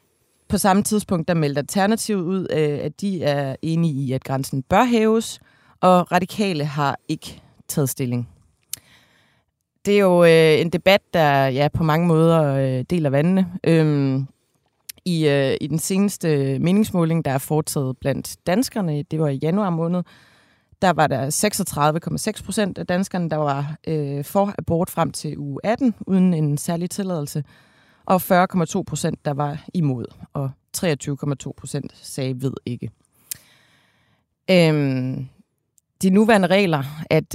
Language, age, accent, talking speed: Danish, 30-49, native, 135 wpm